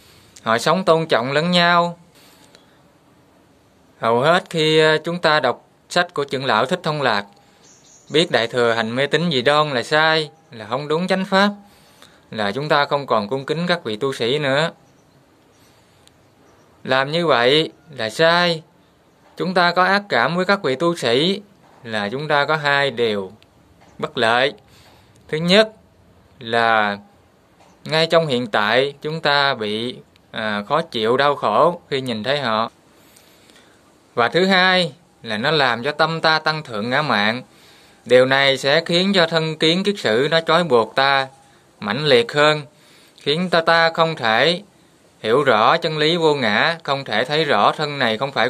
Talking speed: 170 wpm